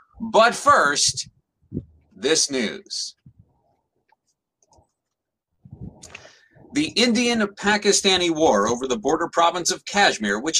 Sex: male